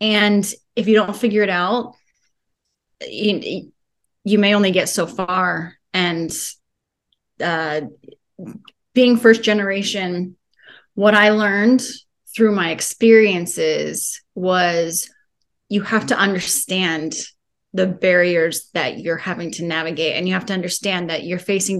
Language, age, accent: English, 30-49, American